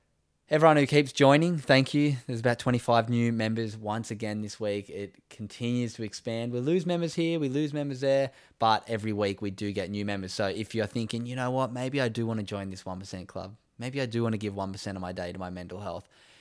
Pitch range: 100-120 Hz